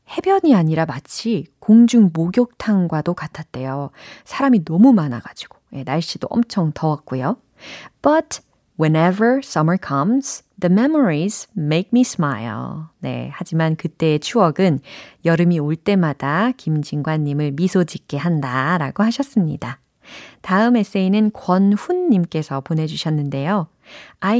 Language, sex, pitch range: Korean, female, 160-225 Hz